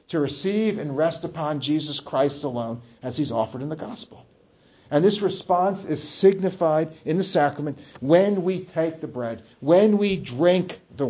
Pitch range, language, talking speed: 145-180 Hz, English, 170 wpm